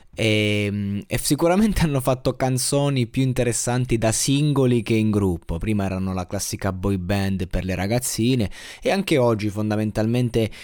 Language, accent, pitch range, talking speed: Italian, native, 100-130 Hz, 145 wpm